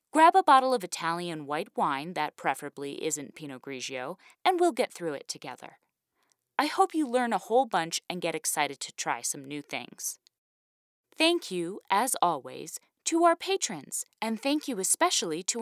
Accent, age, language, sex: American, 20-39, English, female